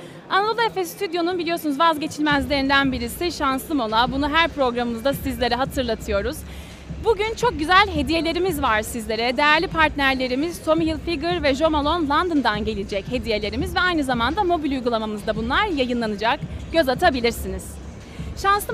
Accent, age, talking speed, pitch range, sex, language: native, 30-49, 120 wpm, 265-355 Hz, female, Turkish